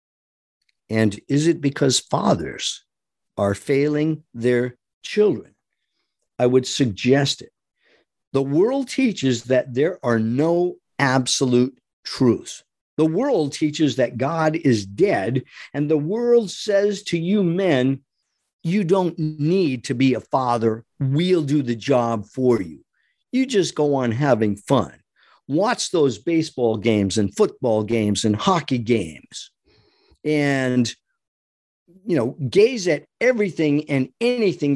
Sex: male